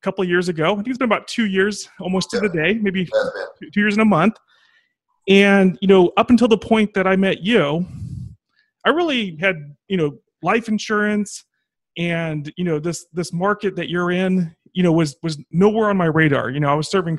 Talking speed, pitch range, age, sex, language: 210 wpm, 155-205 Hz, 30-49, male, English